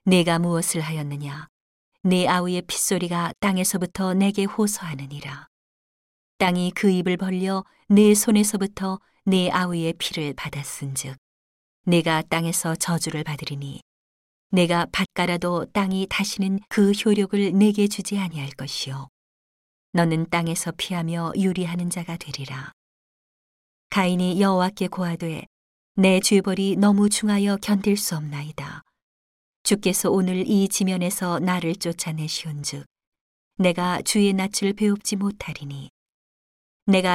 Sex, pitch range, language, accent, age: female, 160-195 Hz, Korean, native, 40-59